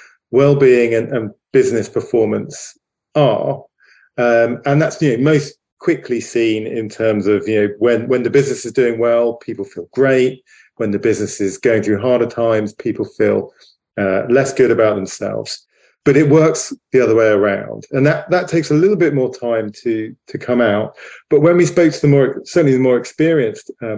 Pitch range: 115-140 Hz